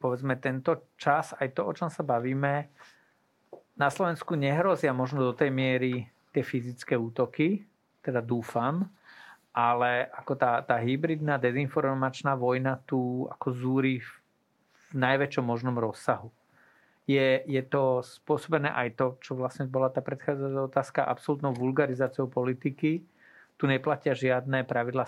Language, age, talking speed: Slovak, 40-59, 130 wpm